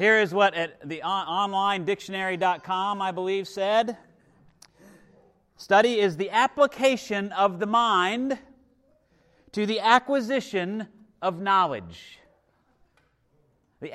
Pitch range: 155-210 Hz